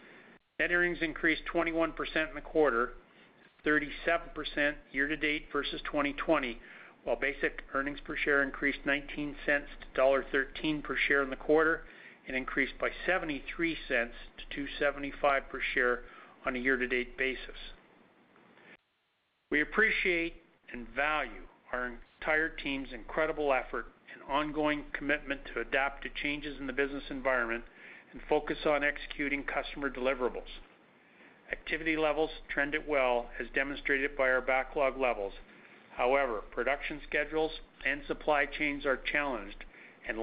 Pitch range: 135-150 Hz